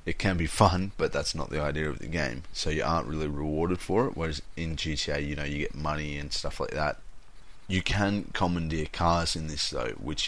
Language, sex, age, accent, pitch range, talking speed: English, male, 30-49, Australian, 75-90 Hz, 230 wpm